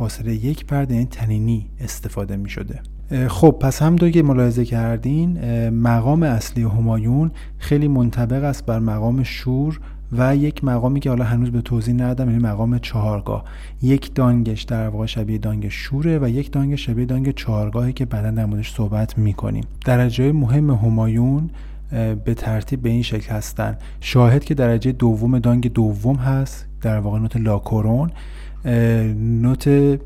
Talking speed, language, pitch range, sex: 150 wpm, Persian, 110-135 Hz, male